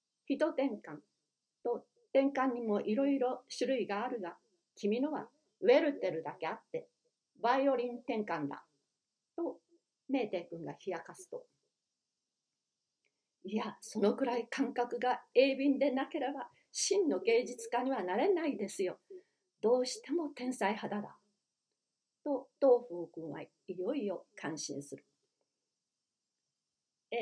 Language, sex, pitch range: Japanese, female, 210-300 Hz